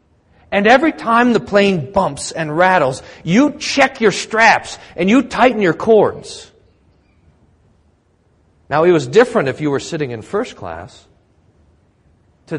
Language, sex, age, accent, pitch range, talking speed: English, male, 40-59, American, 160-235 Hz, 140 wpm